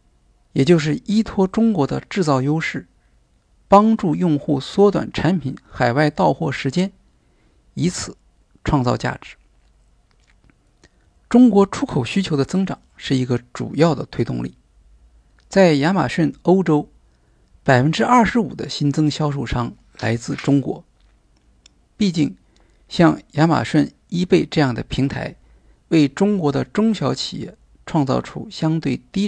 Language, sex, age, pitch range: Chinese, male, 50-69, 115-175 Hz